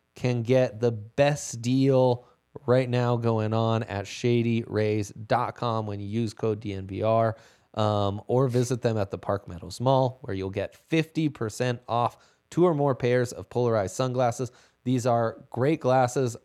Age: 20-39